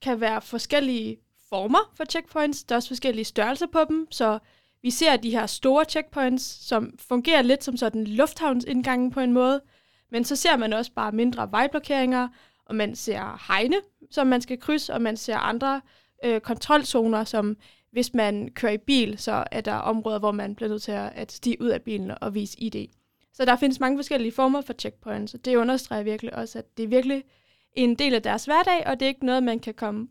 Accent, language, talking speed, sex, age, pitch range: native, Danish, 205 wpm, female, 20-39, 220-270 Hz